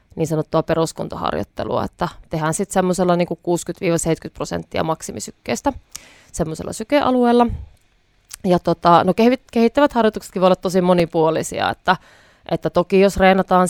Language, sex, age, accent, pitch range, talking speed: Finnish, female, 20-39, native, 160-185 Hz, 120 wpm